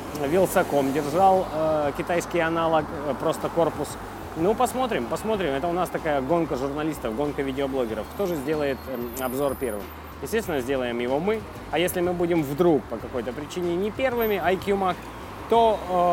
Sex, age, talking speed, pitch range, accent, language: male, 20-39, 160 wpm, 125-175 Hz, native, Russian